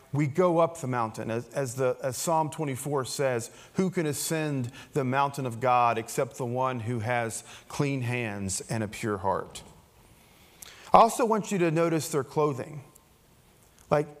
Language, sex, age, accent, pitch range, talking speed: English, male, 40-59, American, 125-175 Hz, 165 wpm